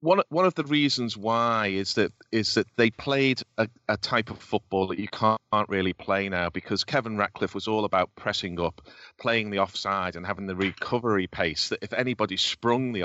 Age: 30-49